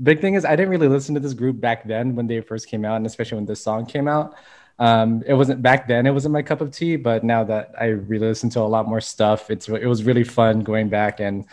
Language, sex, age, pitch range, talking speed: English, male, 20-39, 115-135 Hz, 280 wpm